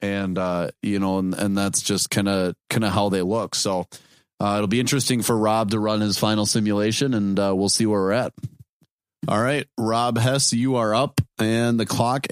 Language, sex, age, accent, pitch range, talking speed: English, male, 30-49, American, 100-125 Hz, 215 wpm